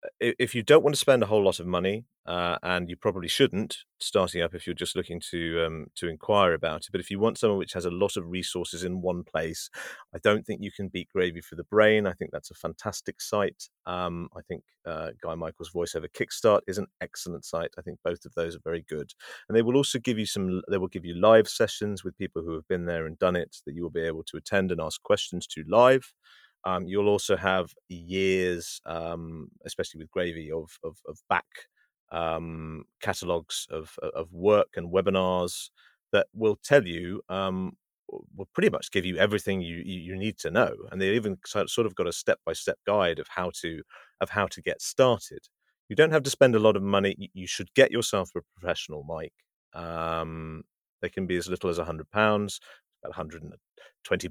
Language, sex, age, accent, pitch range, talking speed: English, male, 30-49, British, 85-105 Hz, 215 wpm